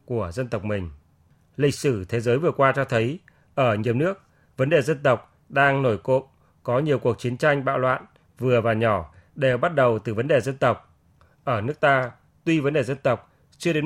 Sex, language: male, Vietnamese